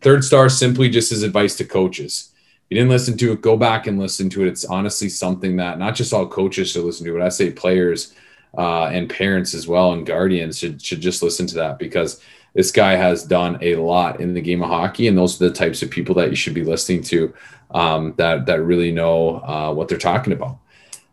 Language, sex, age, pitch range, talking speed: English, male, 30-49, 85-95 Hz, 235 wpm